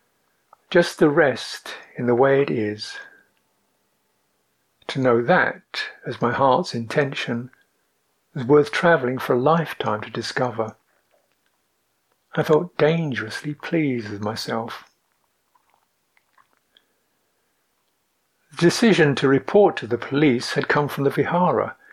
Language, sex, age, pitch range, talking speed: English, male, 60-79, 120-155 Hz, 110 wpm